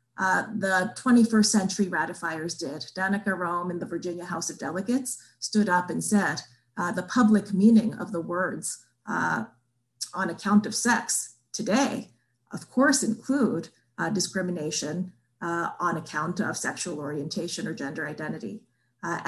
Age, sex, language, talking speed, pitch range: 30-49, female, English, 145 wpm, 175-215 Hz